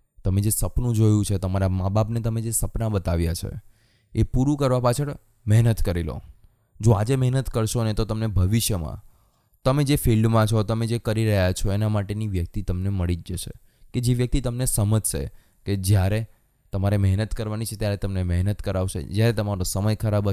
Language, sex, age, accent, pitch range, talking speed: Gujarati, male, 20-39, native, 95-115 Hz, 150 wpm